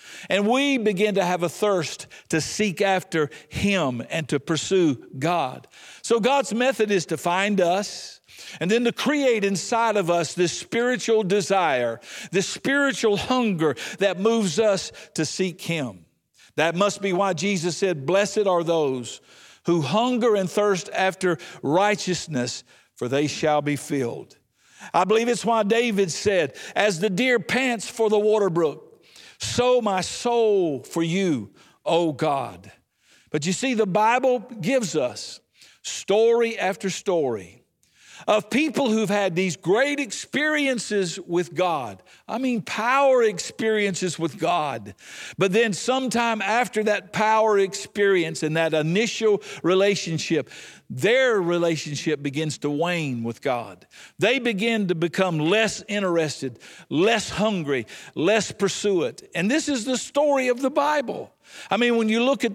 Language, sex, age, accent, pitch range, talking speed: English, male, 60-79, American, 175-230 Hz, 145 wpm